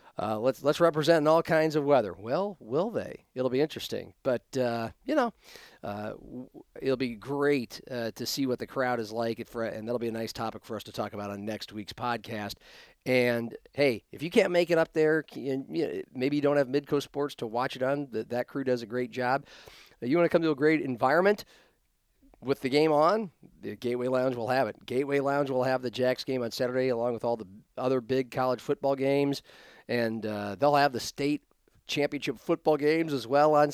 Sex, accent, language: male, American, English